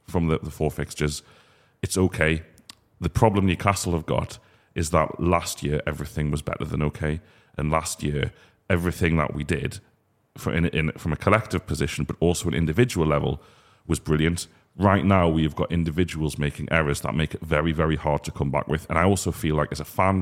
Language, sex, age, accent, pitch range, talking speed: English, male, 30-49, British, 80-100 Hz, 200 wpm